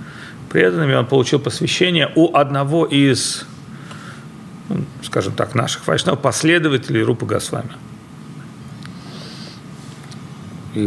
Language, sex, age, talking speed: Russian, male, 40-59, 90 wpm